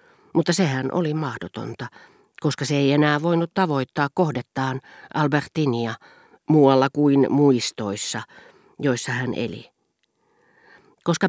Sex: female